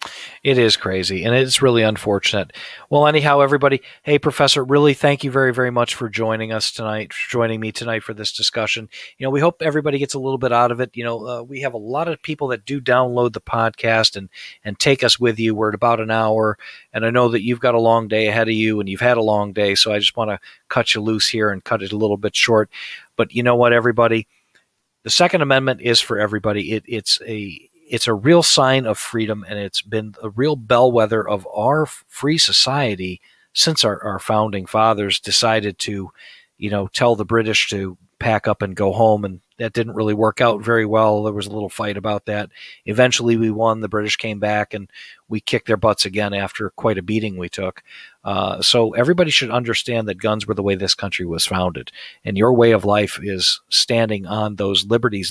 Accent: American